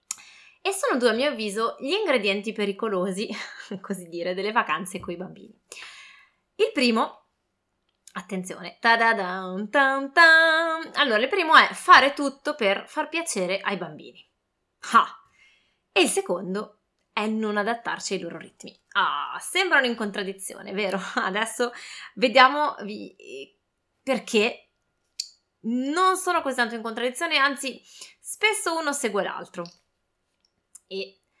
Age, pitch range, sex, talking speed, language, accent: 20-39, 190-245 Hz, female, 120 wpm, Italian, native